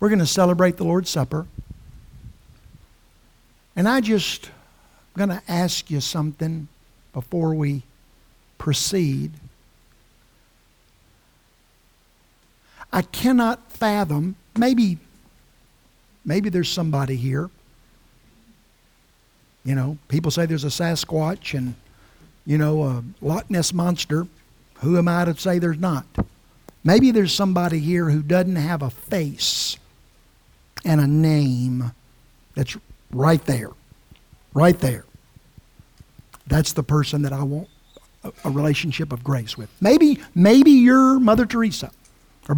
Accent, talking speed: American, 115 wpm